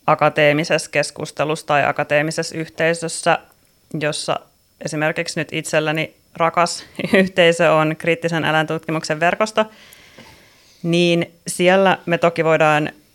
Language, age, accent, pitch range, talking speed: Finnish, 30-49, native, 150-170 Hz, 90 wpm